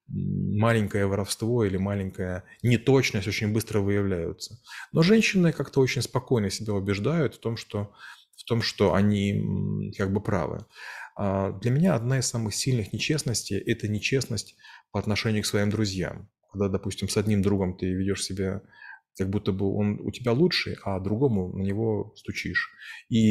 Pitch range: 100-115 Hz